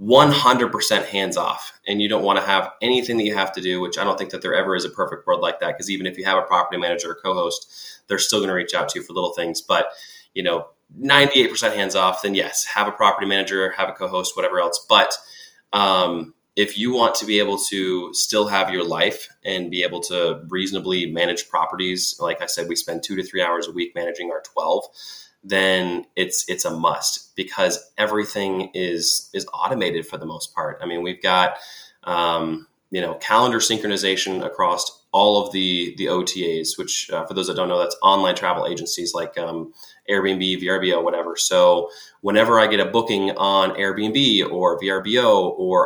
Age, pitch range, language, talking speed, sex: 20-39, 95-125 Hz, English, 205 wpm, male